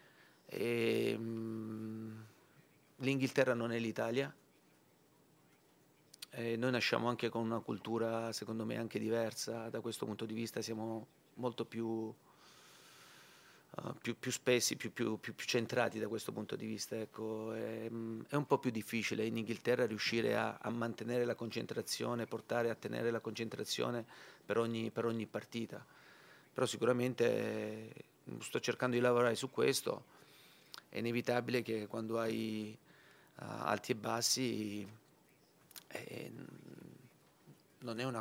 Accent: Italian